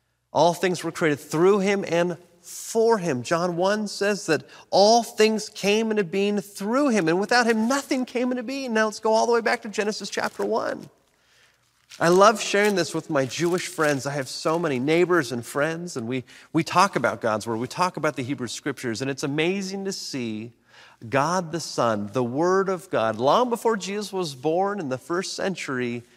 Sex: male